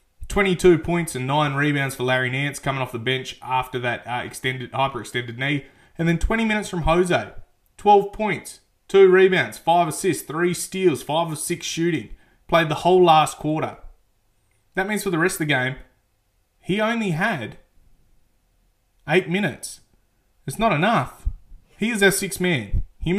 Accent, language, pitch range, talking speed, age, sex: Australian, English, 130-185 Hz, 160 wpm, 20-39, male